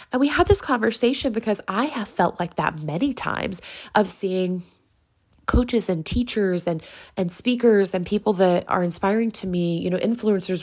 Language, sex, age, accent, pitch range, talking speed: English, female, 20-39, American, 175-240 Hz, 175 wpm